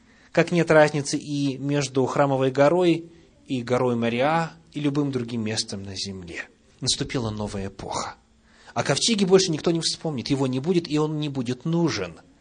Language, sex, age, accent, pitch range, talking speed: Russian, male, 30-49, native, 105-150 Hz, 160 wpm